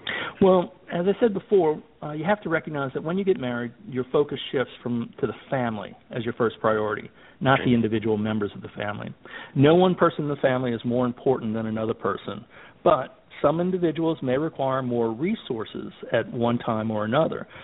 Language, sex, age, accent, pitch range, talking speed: English, male, 50-69, American, 120-155 Hz, 195 wpm